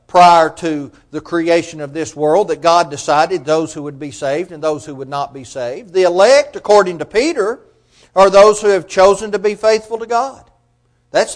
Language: English